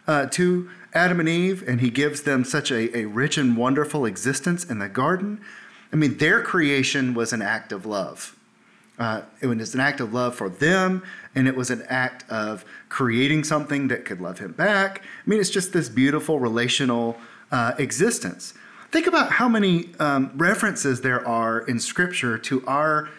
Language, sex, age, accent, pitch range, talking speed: English, male, 30-49, American, 120-155 Hz, 185 wpm